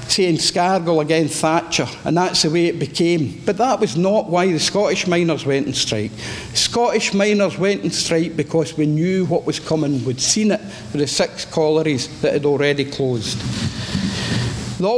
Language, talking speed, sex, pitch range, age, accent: English, 175 wpm, male, 150-180 Hz, 60-79, British